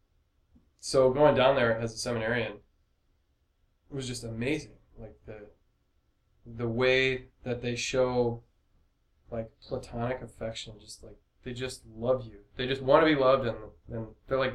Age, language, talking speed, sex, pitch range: 20-39, English, 155 wpm, male, 105-130 Hz